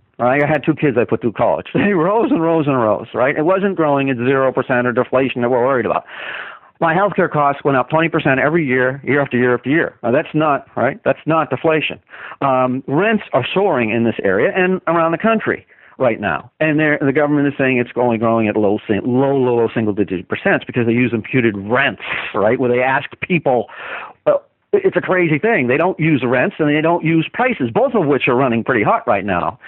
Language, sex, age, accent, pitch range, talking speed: English, male, 50-69, American, 125-175 Hz, 220 wpm